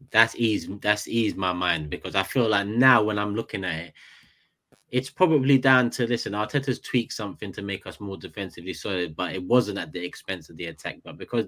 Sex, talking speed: male, 215 wpm